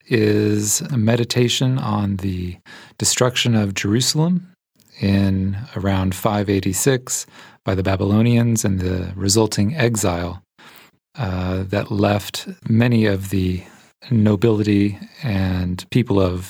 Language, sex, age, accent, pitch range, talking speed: English, male, 40-59, American, 95-120 Hz, 100 wpm